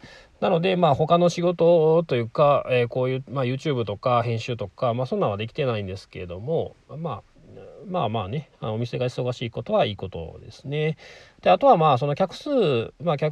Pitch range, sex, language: 100-150 Hz, male, Japanese